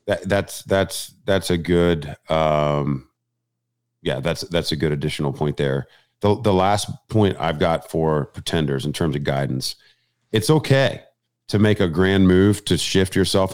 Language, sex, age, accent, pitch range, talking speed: English, male, 40-59, American, 85-110 Hz, 165 wpm